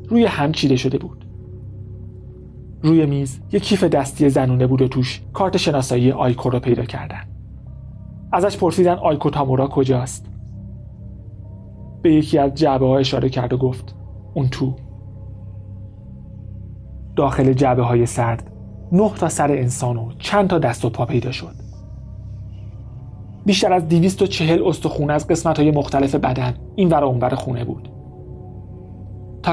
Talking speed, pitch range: 140 wpm, 110-150 Hz